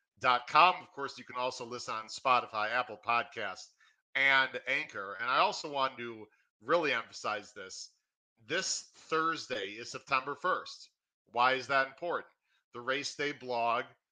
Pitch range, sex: 120-140 Hz, male